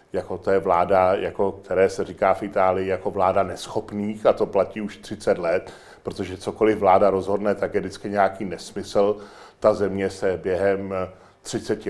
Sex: male